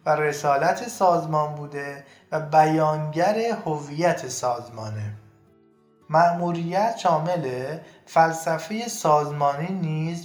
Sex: male